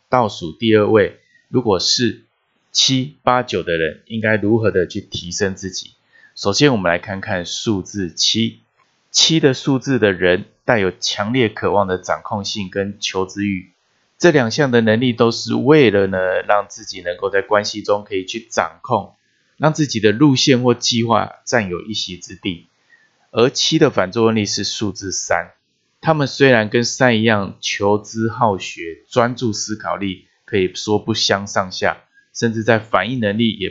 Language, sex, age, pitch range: Chinese, male, 20-39, 100-125 Hz